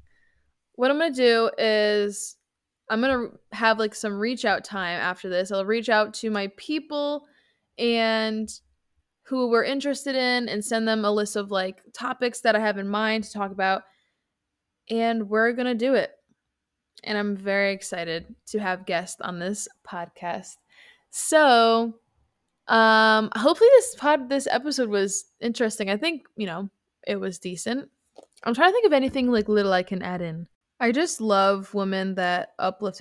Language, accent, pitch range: English, American, 195-240 Hz